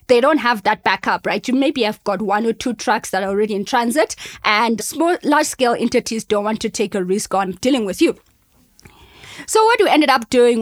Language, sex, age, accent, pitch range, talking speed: English, female, 20-39, South African, 220-275 Hz, 225 wpm